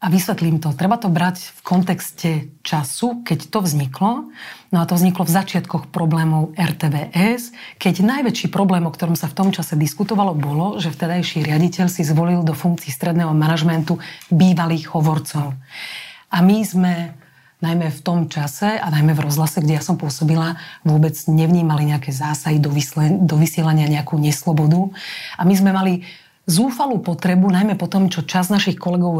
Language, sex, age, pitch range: Slovak, female, 30-49, 155-185 Hz